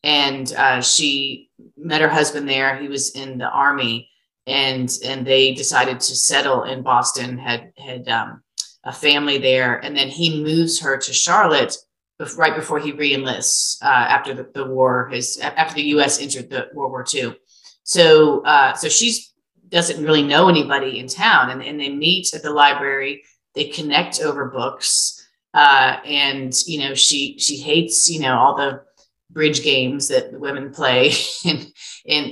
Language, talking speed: English, 170 wpm